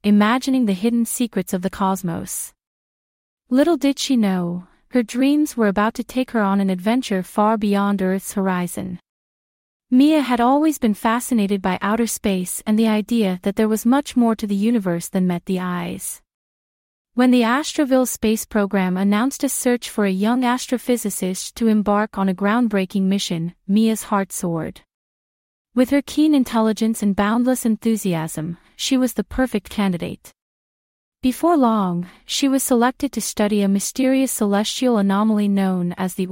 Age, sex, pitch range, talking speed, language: 30-49, female, 195-245 Hz, 155 wpm, English